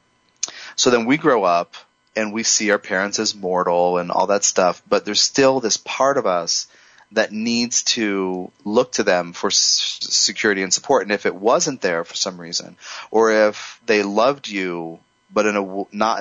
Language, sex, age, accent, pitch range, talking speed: English, male, 30-49, American, 90-110 Hz, 180 wpm